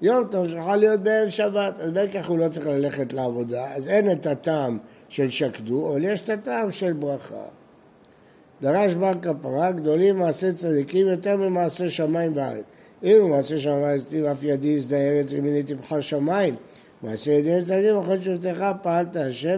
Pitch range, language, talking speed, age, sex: 140-185 Hz, Hebrew, 170 wpm, 60-79, male